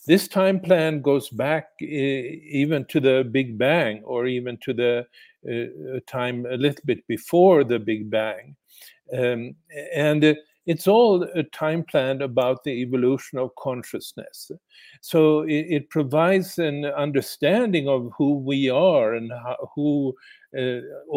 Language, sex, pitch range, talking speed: English, male, 125-150 Hz, 140 wpm